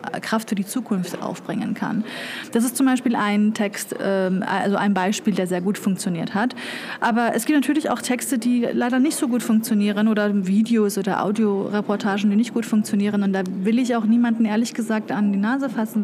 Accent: German